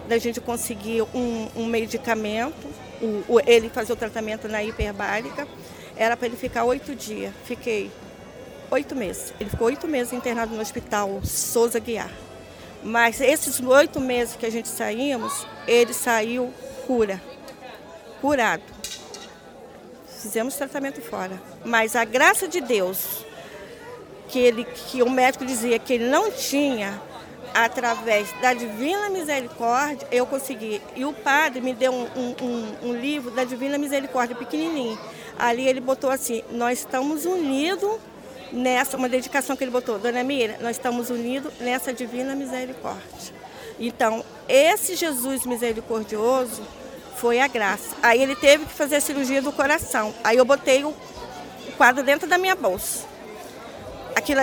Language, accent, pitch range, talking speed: Portuguese, Brazilian, 230-275 Hz, 135 wpm